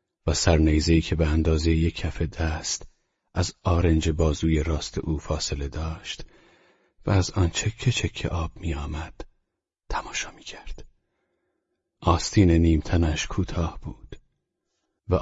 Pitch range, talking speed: 75-85 Hz, 115 wpm